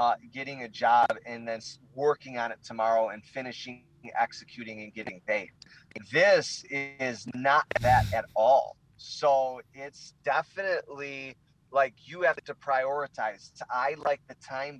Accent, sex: American, male